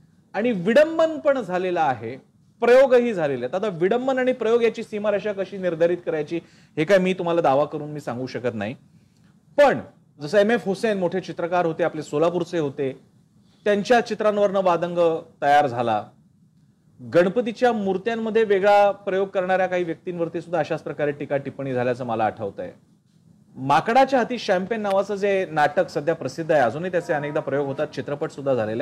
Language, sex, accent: Marathi, male, native